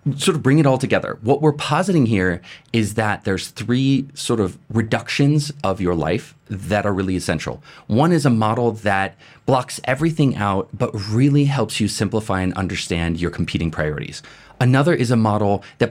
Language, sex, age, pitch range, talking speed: English, male, 30-49, 105-140 Hz, 175 wpm